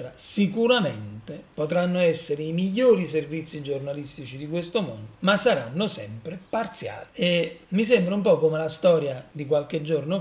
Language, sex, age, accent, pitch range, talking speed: Italian, male, 40-59, native, 135-185 Hz, 145 wpm